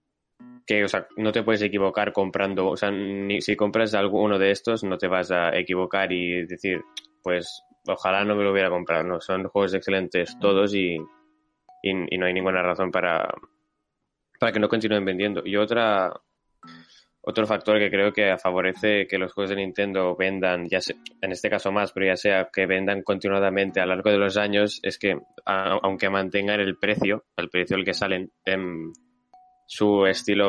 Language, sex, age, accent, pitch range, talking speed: Spanish, male, 20-39, Spanish, 95-105 Hz, 185 wpm